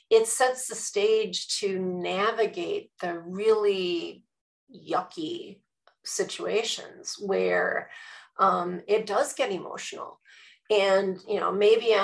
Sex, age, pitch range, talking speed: female, 30-49, 195-260 Hz, 100 wpm